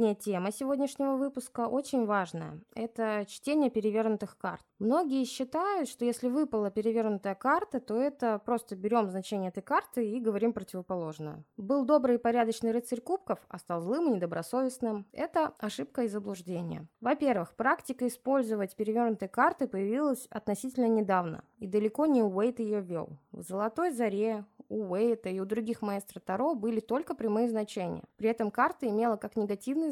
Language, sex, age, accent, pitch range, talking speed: Russian, female, 20-39, native, 205-270 Hz, 150 wpm